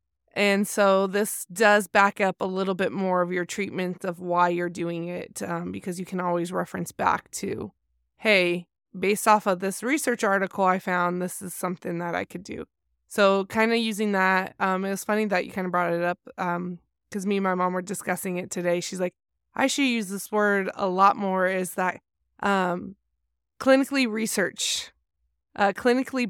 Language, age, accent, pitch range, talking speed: English, 20-39, American, 180-205 Hz, 195 wpm